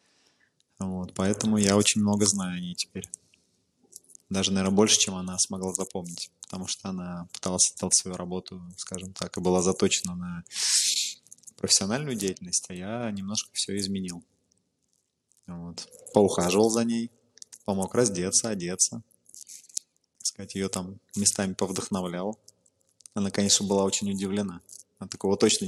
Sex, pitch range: male, 95-110 Hz